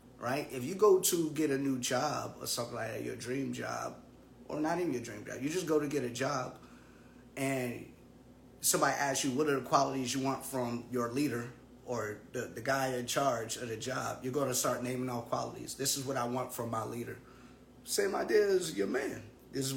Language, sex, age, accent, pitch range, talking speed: English, male, 30-49, American, 125-145 Hz, 220 wpm